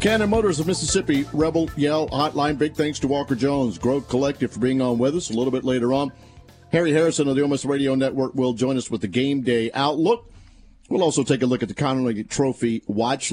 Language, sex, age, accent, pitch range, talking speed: English, male, 50-69, American, 120-150 Hz, 220 wpm